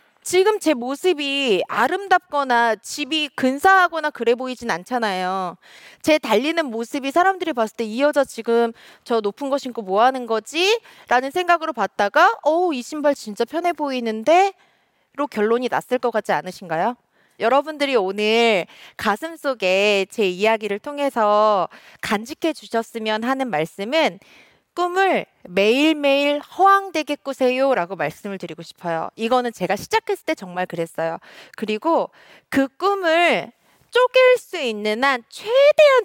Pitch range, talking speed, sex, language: 215-315 Hz, 120 wpm, female, English